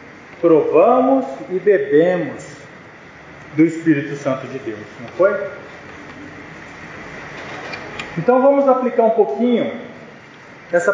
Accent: Brazilian